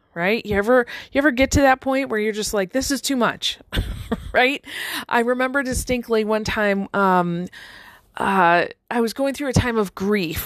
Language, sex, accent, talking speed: English, female, American, 190 wpm